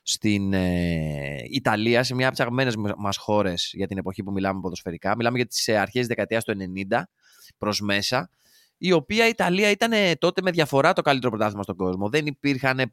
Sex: male